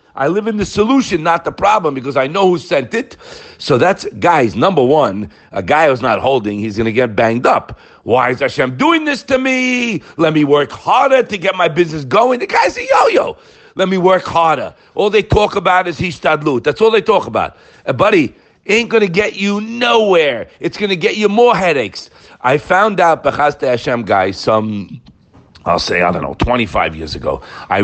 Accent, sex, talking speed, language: American, male, 205 wpm, English